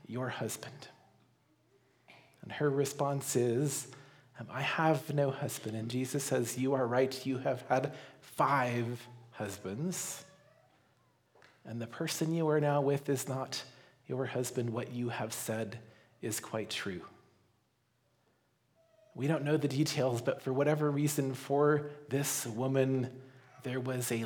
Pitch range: 125-145 Hz